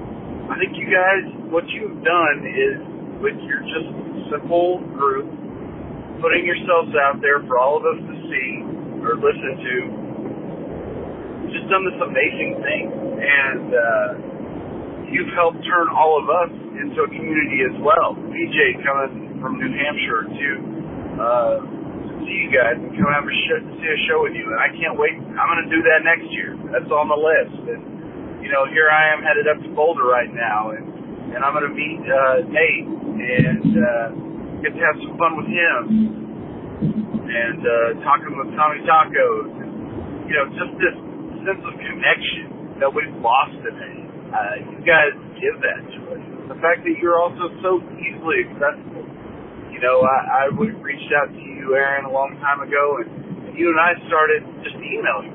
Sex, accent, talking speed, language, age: male, American, 180 wpm, English, 40-59